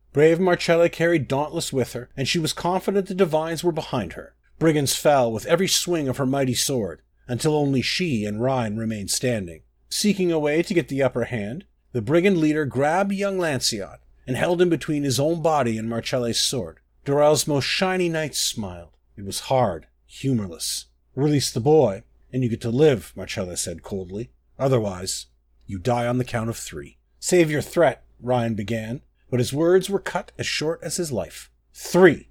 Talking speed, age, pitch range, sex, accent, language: 185 wpm, 40-59, 110-160 Hz, male, American, English